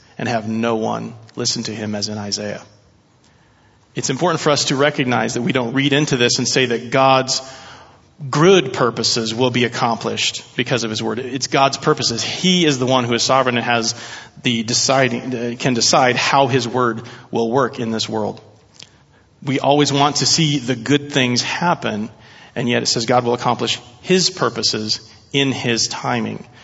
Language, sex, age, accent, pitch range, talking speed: English, male, 40-59, American, 115-140 Hz, 180 wpm